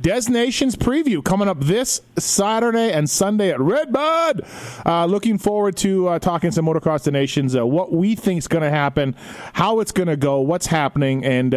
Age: 30-49